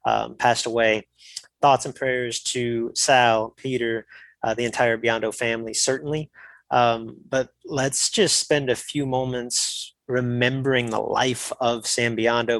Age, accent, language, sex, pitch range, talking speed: 20-39, American, English, male, 115-130 Hz, 140 wpm